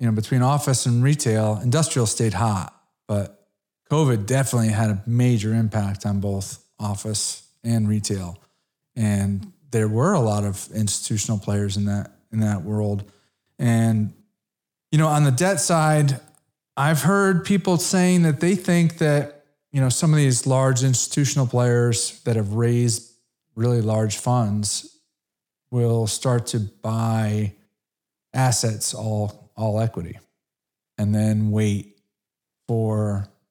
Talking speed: 135 wpm